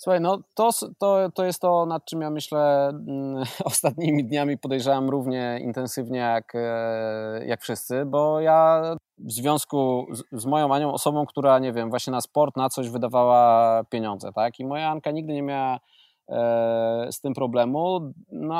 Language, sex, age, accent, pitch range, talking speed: Polish, male, 20-39, native, 125-160 Hz, 170 wpm